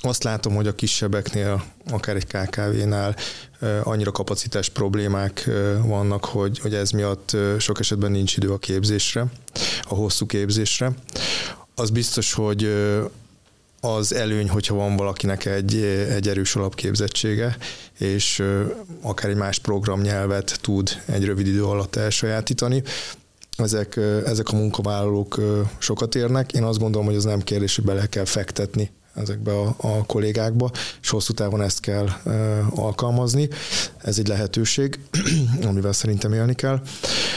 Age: 20-39